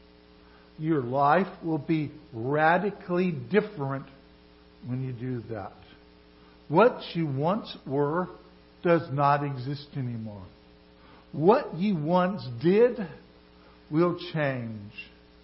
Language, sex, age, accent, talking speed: English, male, 60-79, American, 95 wpm